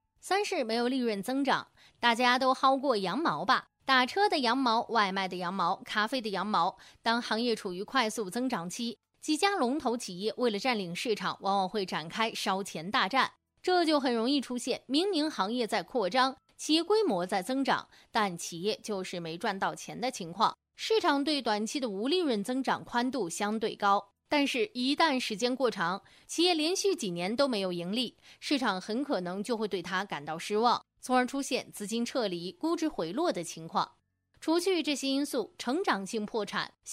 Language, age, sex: Chinese, 20-39, female